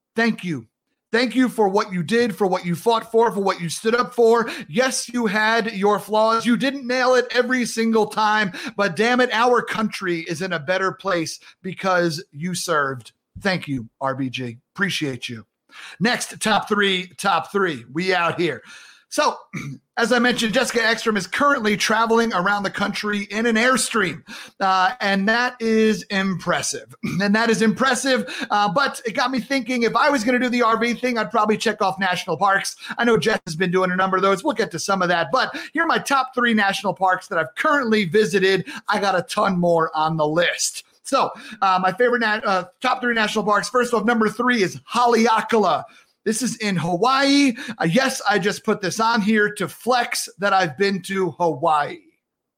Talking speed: 195 wpm